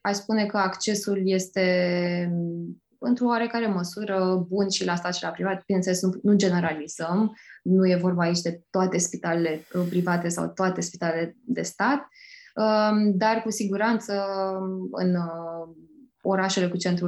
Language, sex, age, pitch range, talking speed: Romanian, female, 20-39, 175-210 Hz, 135 wpm